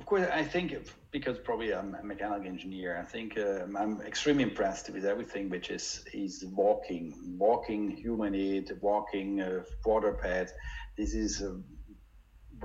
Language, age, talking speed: English, 50-69, 150 wpm